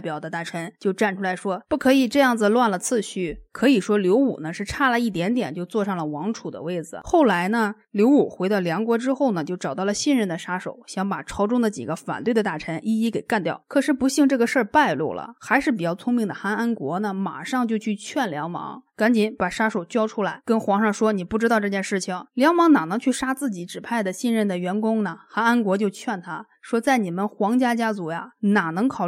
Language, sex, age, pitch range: Chinese, female, 20-39, 185-235 Hz